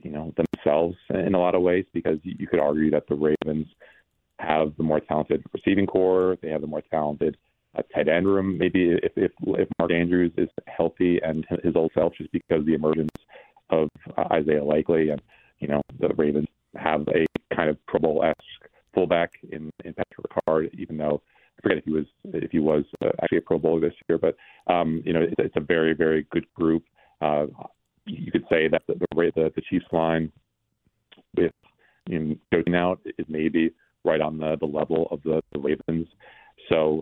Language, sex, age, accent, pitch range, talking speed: English, male, 40-59, American, 75-85 Hz, 195 wpm